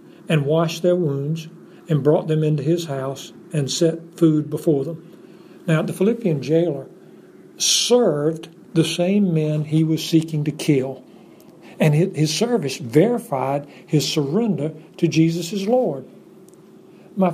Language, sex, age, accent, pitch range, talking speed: English, male, 60-79, American, 150-185 Hz, 130 wpm